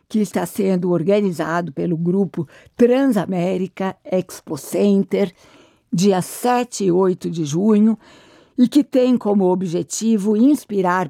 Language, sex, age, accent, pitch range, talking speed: Portuguese, female, 60-79, Brazilian, 180-220 Hz, 115 wpm